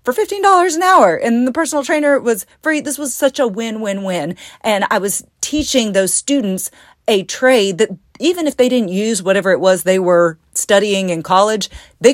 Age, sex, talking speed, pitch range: 40-59, female, 190 wpm, 180-230 Hz